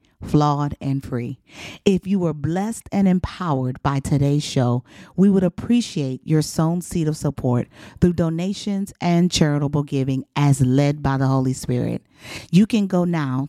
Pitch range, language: 135-165 Hz, English